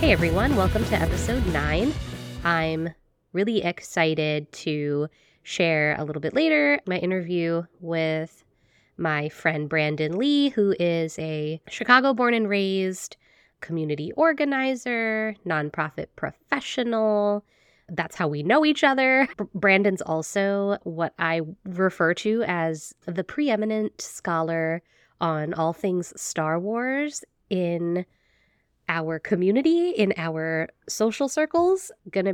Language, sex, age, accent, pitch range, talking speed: English, female, 20-39, American, 160-210 Hz, 115 wpm